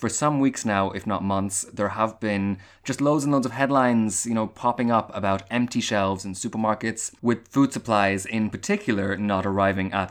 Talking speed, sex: 195 wpm, male